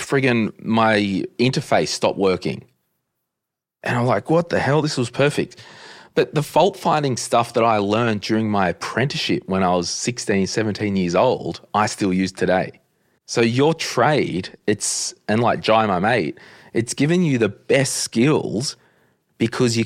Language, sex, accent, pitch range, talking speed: English, male, Australian, 95-120 Hz, 160 wpm